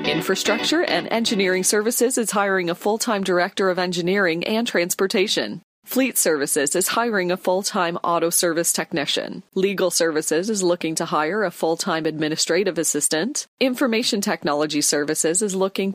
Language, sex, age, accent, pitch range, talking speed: English, female, 40-59, American, 170-205 Hz, 140 wpm